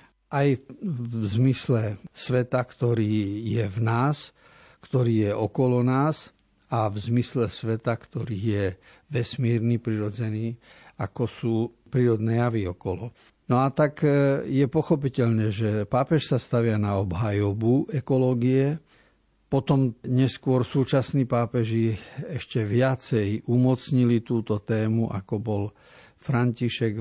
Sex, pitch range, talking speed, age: male, 110-135 Hz, 110 wpm, 50-69